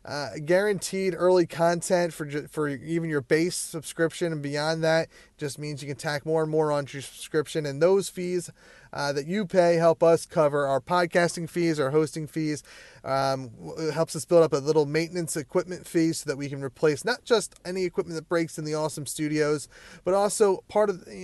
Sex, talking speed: male, 200 wpm